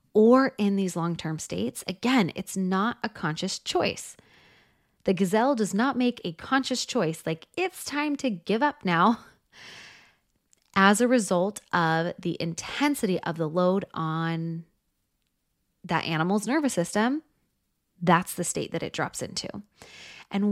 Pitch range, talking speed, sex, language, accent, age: 175-235 Hz, 140 wpm, female, English, American, 20-39